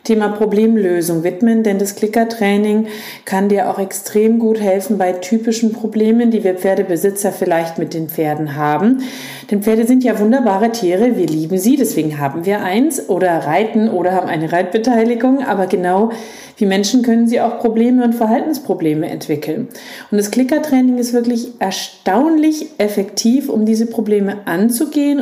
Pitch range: 195-235 Hz